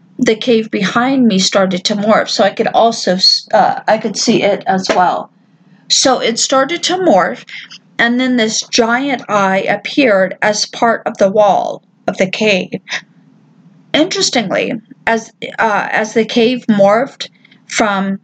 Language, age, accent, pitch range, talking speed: English, 40-59, American, 195-245 Hz, 150 wpm